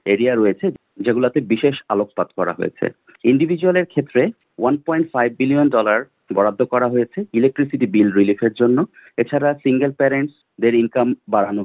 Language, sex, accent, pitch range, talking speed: Bengali, male, native, 110-135 Hz, 65 wpm